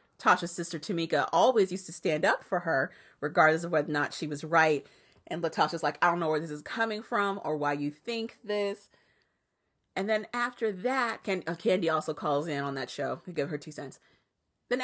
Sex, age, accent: female, 30-49, American